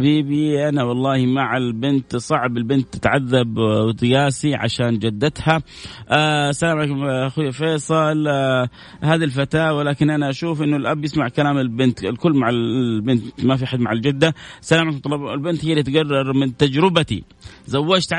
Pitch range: 130-160 Hz